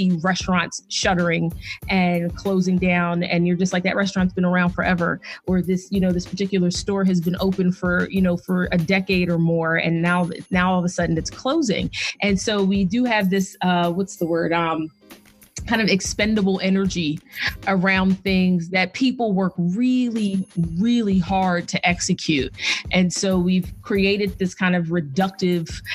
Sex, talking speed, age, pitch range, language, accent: female, 170 wpm, 30-49, 180-230 Hz, English, American